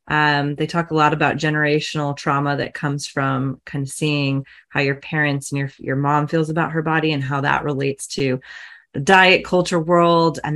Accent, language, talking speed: American, English, 200 wpm